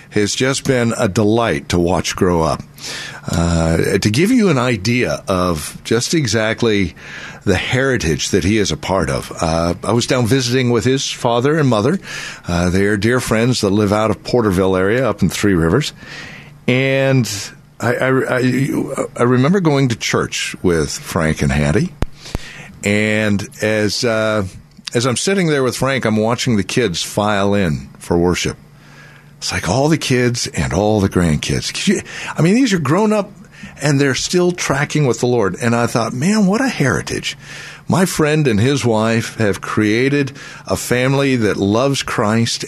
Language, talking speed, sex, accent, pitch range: English, 170 wpm, male, American, 100-140 Hz